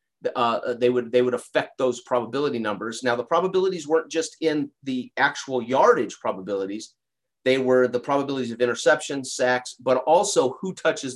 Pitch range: 125-155 Hz